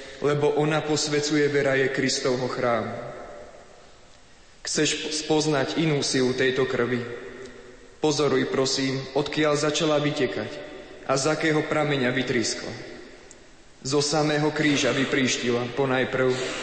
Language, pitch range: Slovak, 130-150 Hz